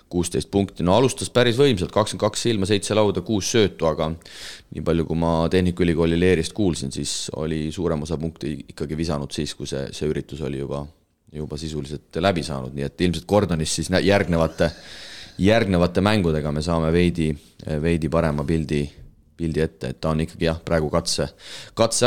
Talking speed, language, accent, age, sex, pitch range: 165 wpm, English, Finnish, 30-49, male, 75-95 Hz